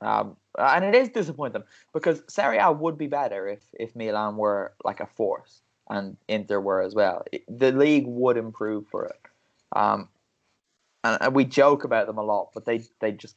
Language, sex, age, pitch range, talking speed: English, male, 20-39, 110-135 Hz, 190 wpm